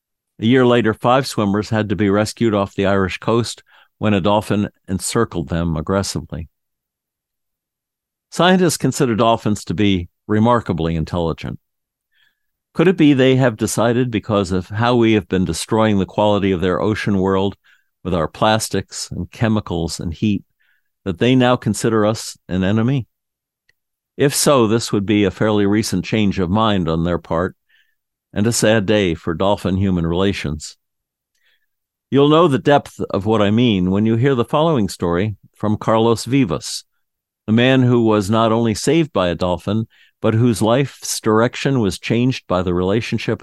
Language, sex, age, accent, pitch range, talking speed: English, male, 50-69, American, 95-115 Hz, 160 wpm